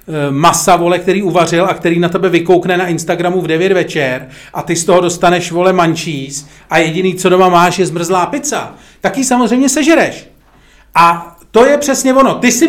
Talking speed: 190 wpm